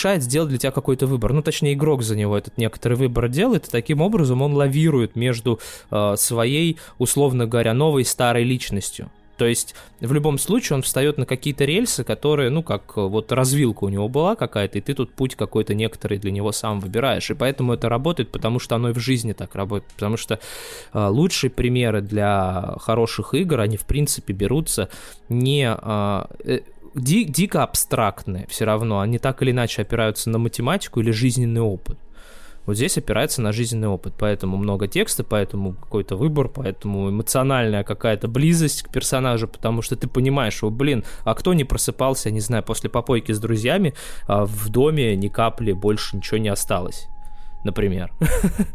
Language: Russian